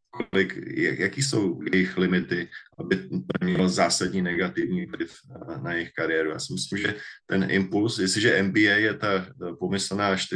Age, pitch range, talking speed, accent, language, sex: 20-39, 95-100 Hz, 145 wpm, native, Czech, male